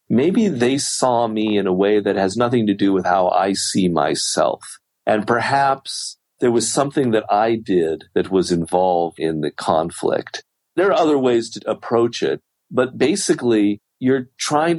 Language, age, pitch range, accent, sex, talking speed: English, 40-59, 90-115 Hz, American, male, 170 wpm